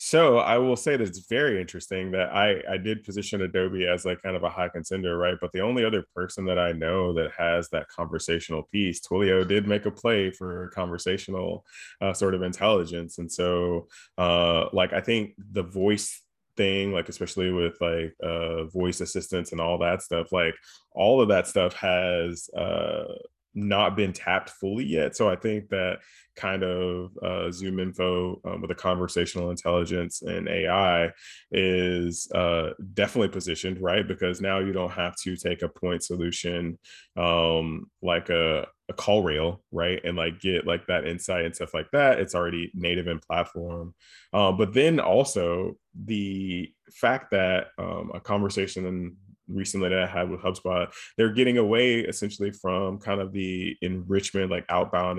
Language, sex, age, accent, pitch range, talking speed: English, male, 20-39, American, 85-95 Hz, 175 wpm